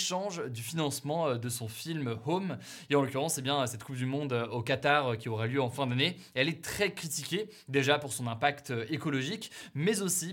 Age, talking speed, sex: 20-39, 210 wpm, male